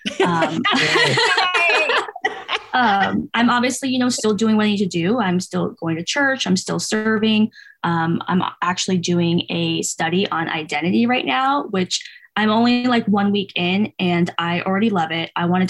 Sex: female